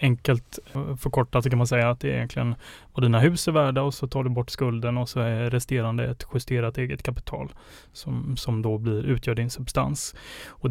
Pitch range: 120-135 Hz